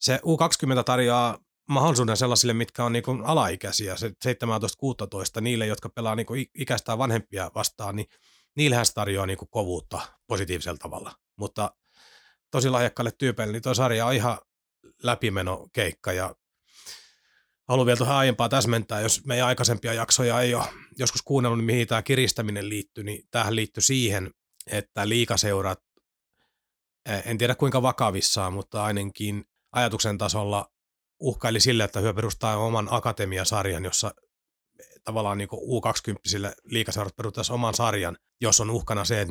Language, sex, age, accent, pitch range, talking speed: Finnish, male, 30-49, native, 100-120 Hz, 130 wpm